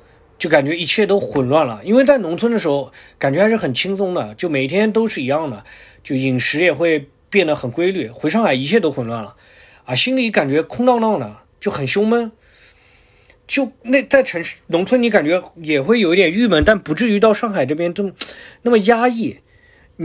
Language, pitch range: Chinese, 130-205 Hz